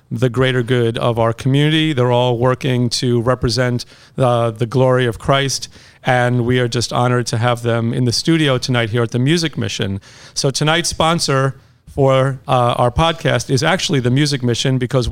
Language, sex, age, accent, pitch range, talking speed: English, male, 40-59, American, 125-140 Hz, 185 wpm